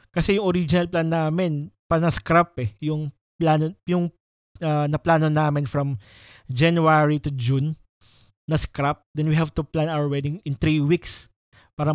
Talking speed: 150 wpm